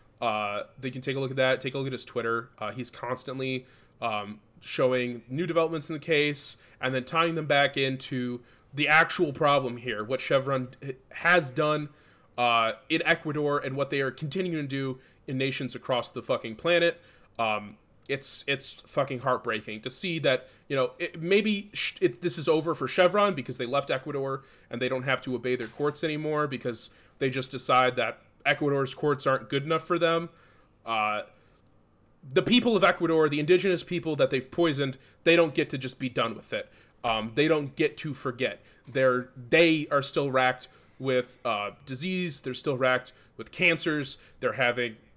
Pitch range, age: 125-160 Hz, 20-39